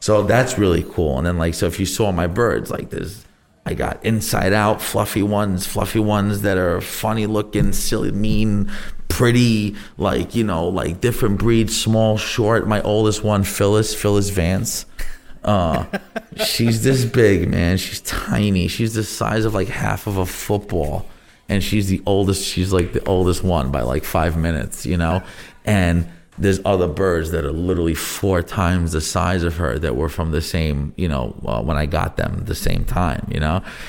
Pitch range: 85-105 Hz